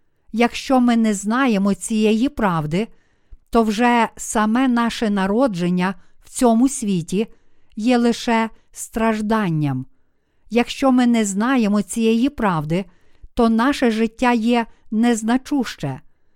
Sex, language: female, Ukrainian